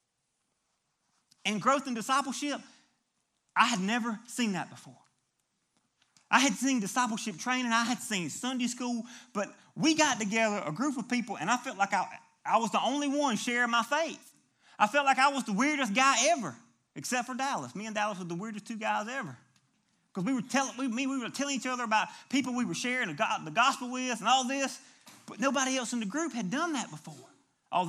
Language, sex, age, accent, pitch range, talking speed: English, male, 30-49, American, 225-280 Hz, 195 wpm